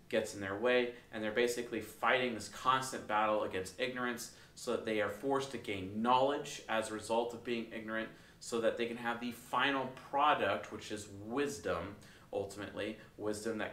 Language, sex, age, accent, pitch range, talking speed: English, male, 30-49, American, 105-125 Hz, 180 wpm